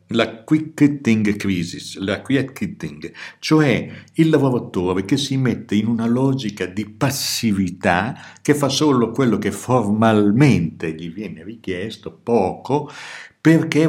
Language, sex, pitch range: Italian, male, 95-125 Hz